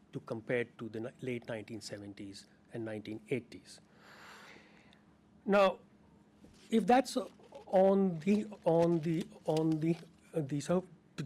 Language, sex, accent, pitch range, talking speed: English, male, Indian, 115-170 Hz, 100 wpm